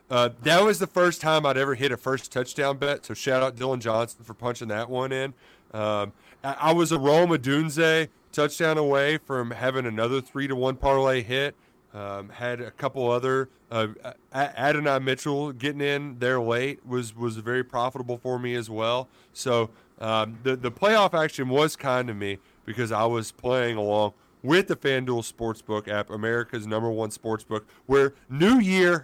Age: 30-49